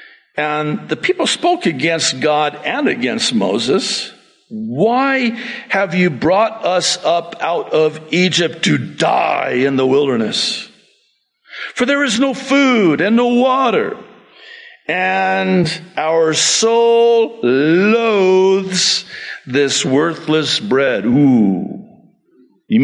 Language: English